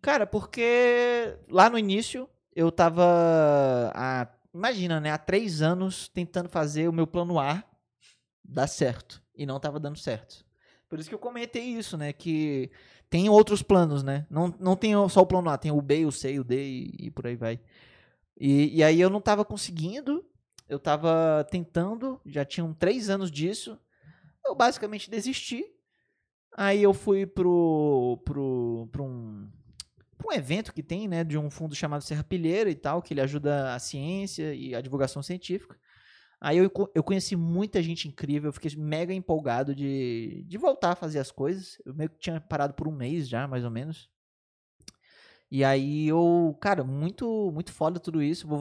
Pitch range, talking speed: 145-195 Hz, 175 wpm